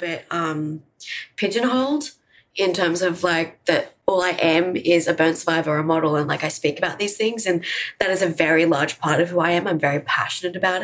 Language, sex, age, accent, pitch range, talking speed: English, female, 20-39, Australian, 160-200 Hz, 215 wpm